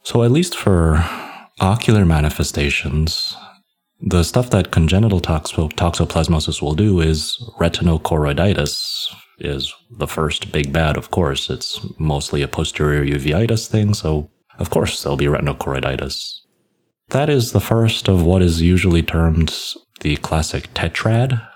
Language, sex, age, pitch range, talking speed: English, male, 30-49, 75-100 Hz, 130 wpm